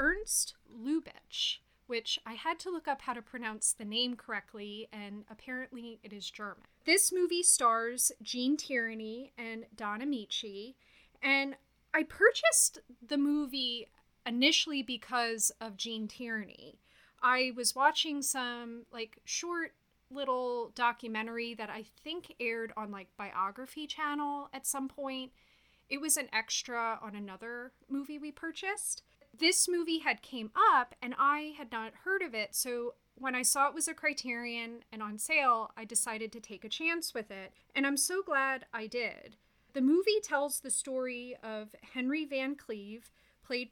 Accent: American